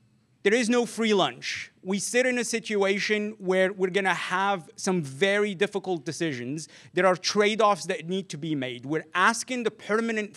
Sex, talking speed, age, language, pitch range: male, 175 wpm, 30-49, English, 165-200 Hz